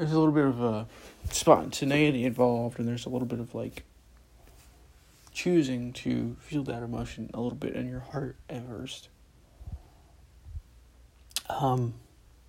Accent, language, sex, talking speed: American, English, male, 140 wpm